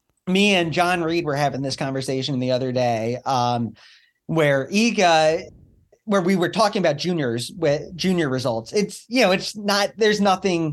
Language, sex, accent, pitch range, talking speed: English, male, American, 160-220 Hz, 170 wpm